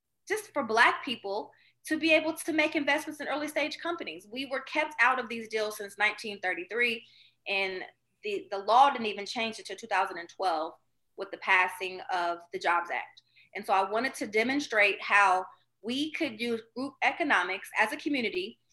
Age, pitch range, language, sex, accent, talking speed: 30-49, 205-270 Hz, English, female, American, 175 wpm